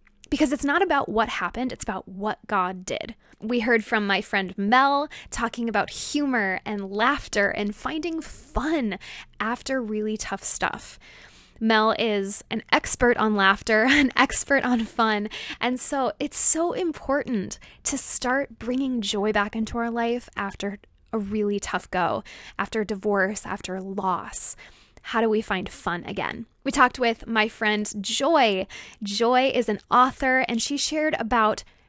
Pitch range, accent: 210-255 Hz, American